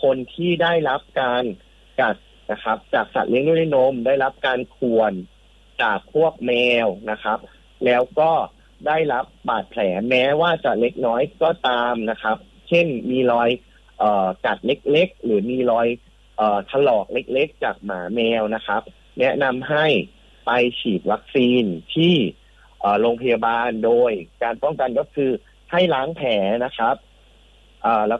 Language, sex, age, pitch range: English, male, 30-49, 115-150 Hz